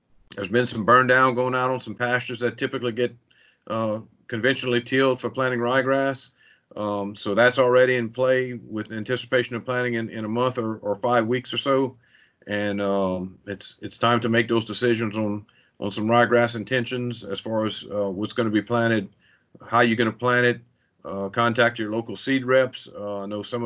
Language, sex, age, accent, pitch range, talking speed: English, male, 50-69, American, 105-120 Hz, 200 wpm